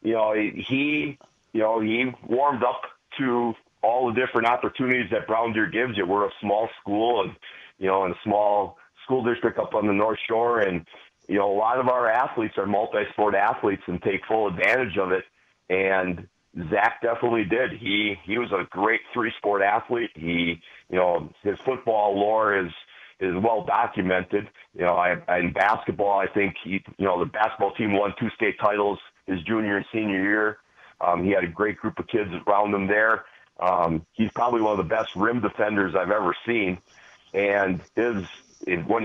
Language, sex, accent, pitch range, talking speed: English, male, American, 95-115 Hz, 185 wpm